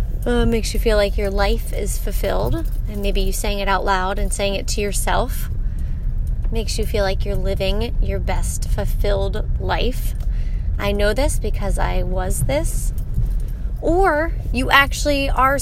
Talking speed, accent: 160 wpm, American